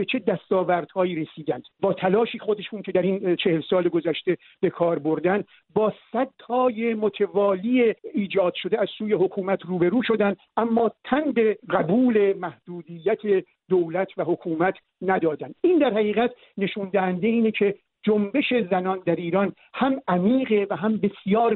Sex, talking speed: male, 135 wpm